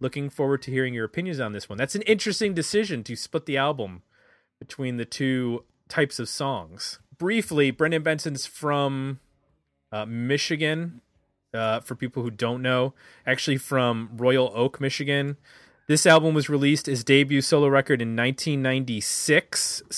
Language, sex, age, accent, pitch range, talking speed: English, male, 30-49, American, 125-150 Hz, 150 wpm